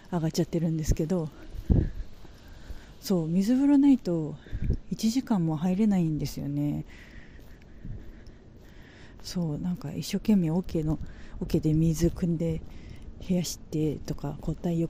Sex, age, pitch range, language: female, 40-59, 145-190 Hz, Japanese